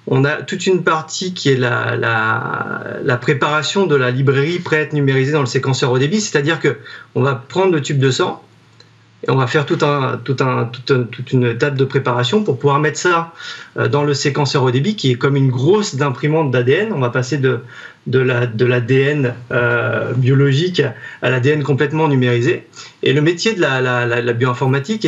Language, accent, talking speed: French, French, 200 wpm